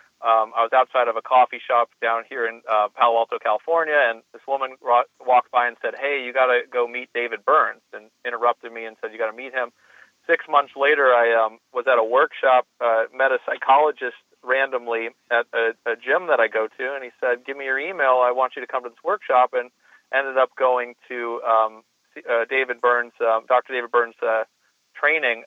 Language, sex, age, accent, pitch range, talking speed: English, male, 40-59, American, 115-125 Hz, 215 wpm